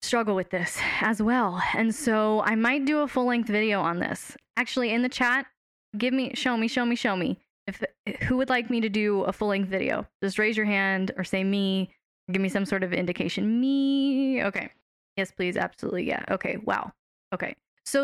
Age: 10-29